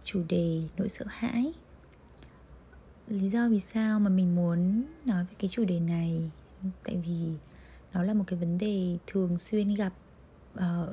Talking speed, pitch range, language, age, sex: 165 wpm, 175-215 Hz, Vietnamese, 20-39, female